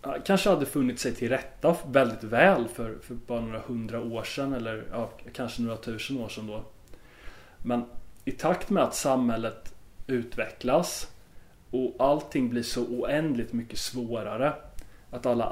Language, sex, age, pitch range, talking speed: Swedish, male, 30-49, 115-125 Hz, 150 wpm